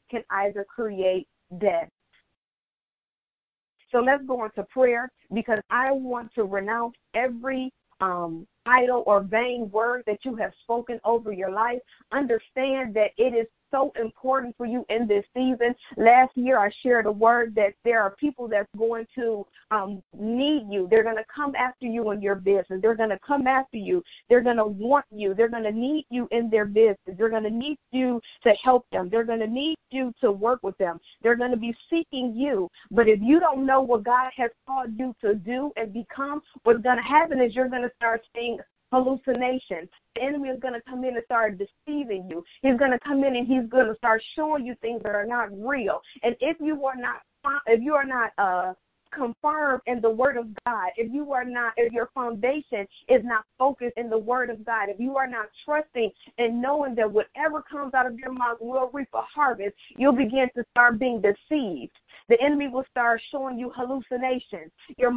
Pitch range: 225-265 Hz